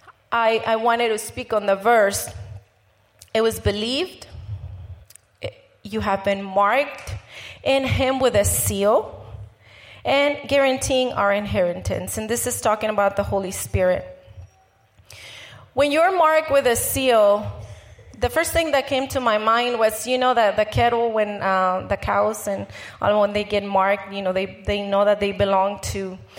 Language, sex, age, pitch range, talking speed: English, female, 30-49, 190-255 Hz, 160 wpm